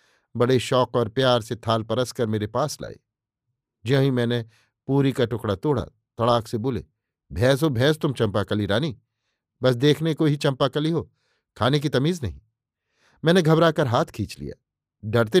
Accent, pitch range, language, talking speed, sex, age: native, 110-140 Hz, Hindi, 170 wpm, male, 50-69